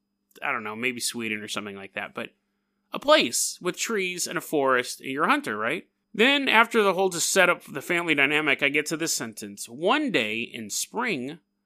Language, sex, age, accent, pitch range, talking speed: English, male, 30-49, American, 150-240 Hz, 205 wpm